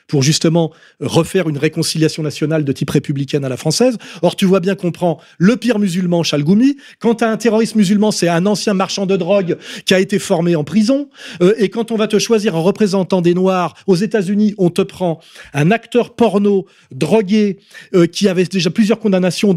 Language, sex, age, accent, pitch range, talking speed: French, male, 30-49, French, 165-210 Hz, 200 wpm